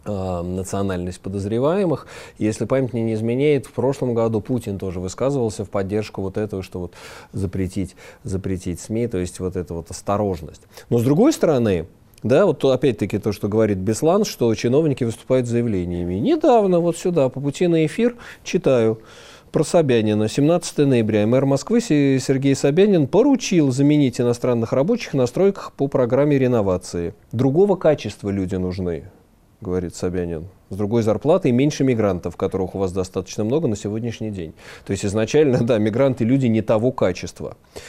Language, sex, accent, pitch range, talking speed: Russian, male, native, 100-140 Hz, 150 wpm